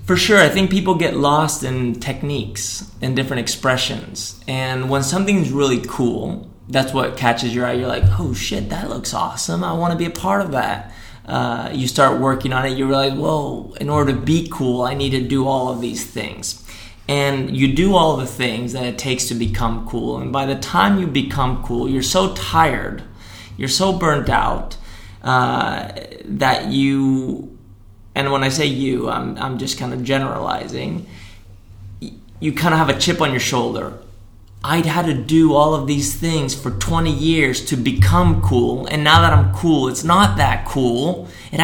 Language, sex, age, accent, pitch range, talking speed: English, male, 30-49, American, 110-150 Hz, 190 wpm